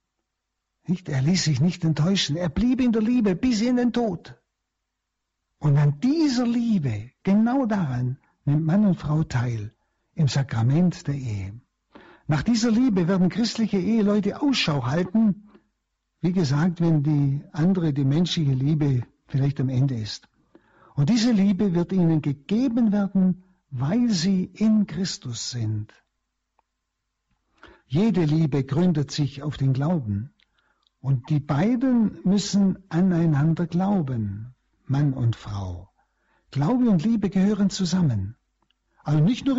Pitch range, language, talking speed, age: 140-210 Hz, German, 130 wpm, 60-79